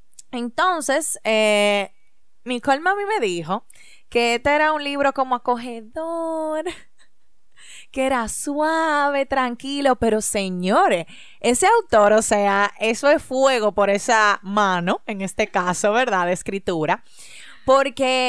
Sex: female